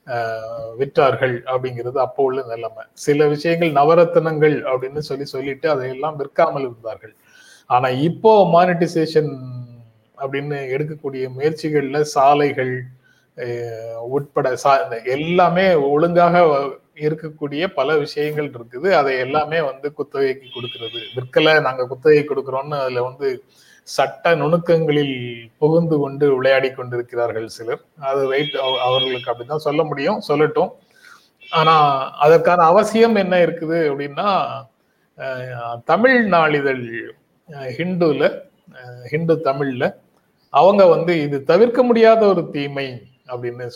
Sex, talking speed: male, 105 wpm